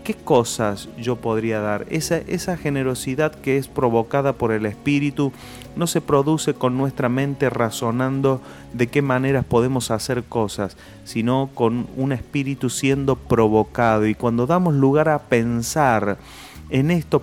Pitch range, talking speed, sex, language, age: 115-140 Hz, 145 wpm, male, Spanish, 30-49